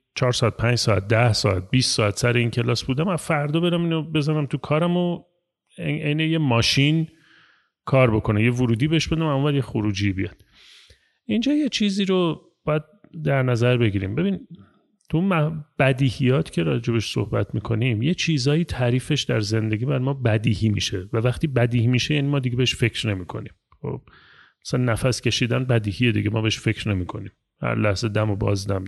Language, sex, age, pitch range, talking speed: Persian, male, 30-49, 115-155 Hz, 170 wpm